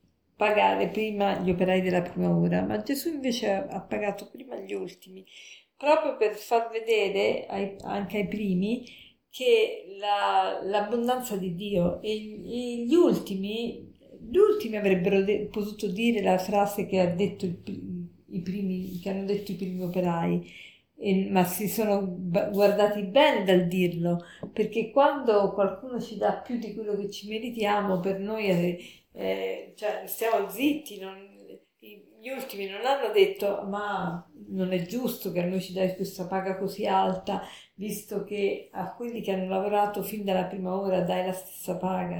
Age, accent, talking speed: 50-69, native, 145 wpm